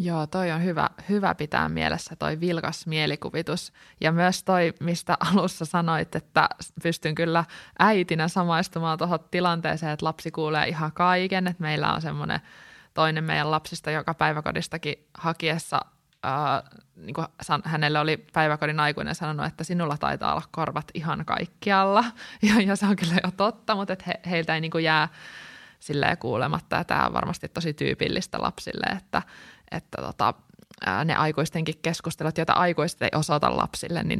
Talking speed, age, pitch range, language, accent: 150 wpm, 20-39, 155-180 Hz, Finnish, native